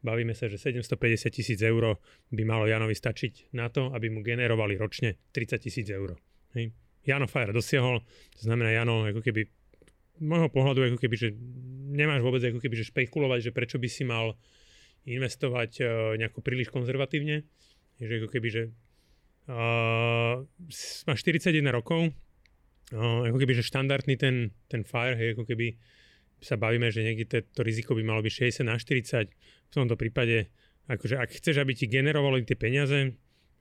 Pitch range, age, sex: 115-135 Hz, 30-49, male